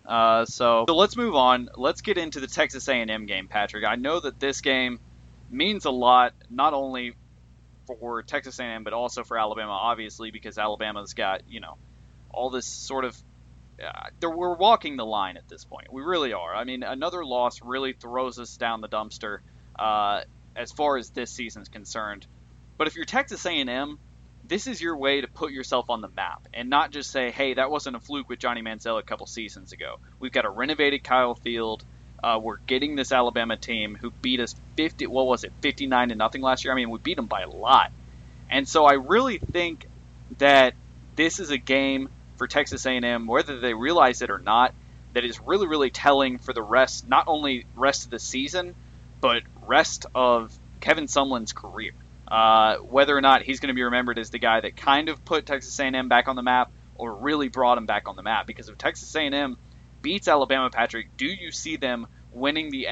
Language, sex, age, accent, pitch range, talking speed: English, male, 20-39, American, 110-135 Hz, 205 wpm